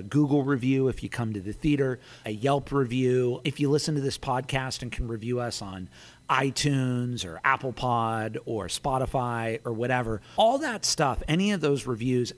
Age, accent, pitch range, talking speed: 40-59, American, 115-140 Hz, 180 wpm